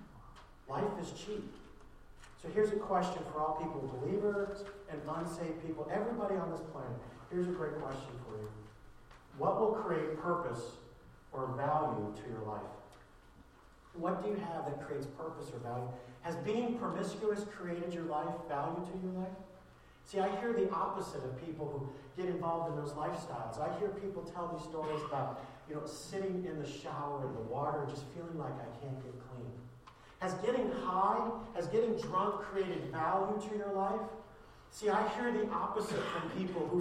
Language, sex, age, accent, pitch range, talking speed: English, male, 50-69, American, 150-205 Hz, 175 wpm